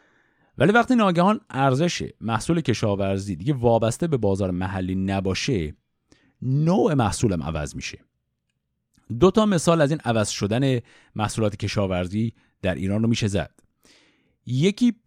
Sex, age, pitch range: male, 50-69, 100-165 Hz